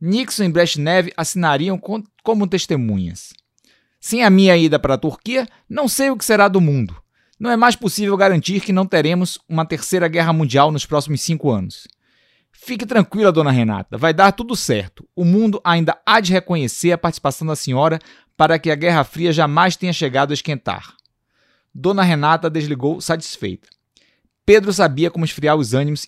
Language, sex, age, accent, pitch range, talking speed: Portuguese, male, 20-39, Brazilian, 145-185 Hz, 170 wpm